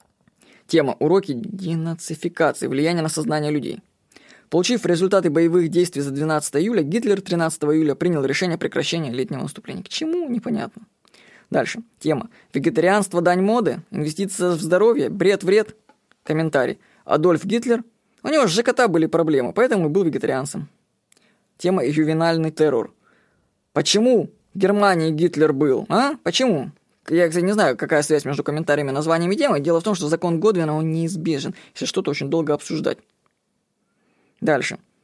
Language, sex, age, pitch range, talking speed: Russian, female, 20-39, 160-195 Hz, 140 wpm